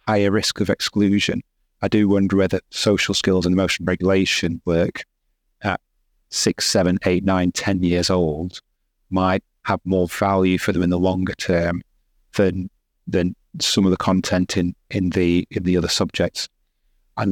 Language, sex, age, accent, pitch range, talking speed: English, male, 30-49, British, 90-105 Hz, 160 wpm